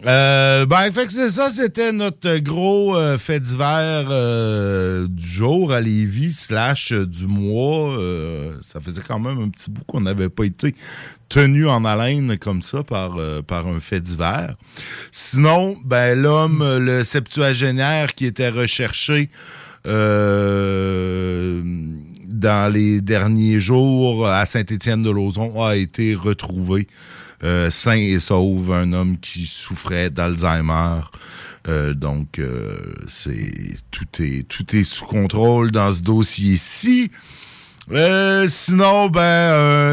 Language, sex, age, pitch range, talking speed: French, male, 50-69, 100-145 Hz, 135 wpm